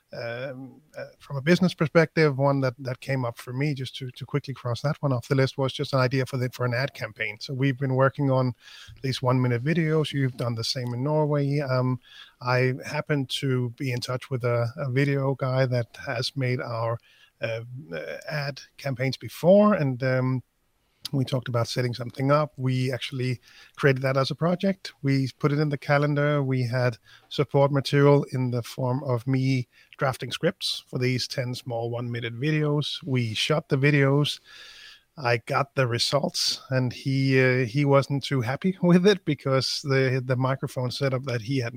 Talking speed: 190 wpm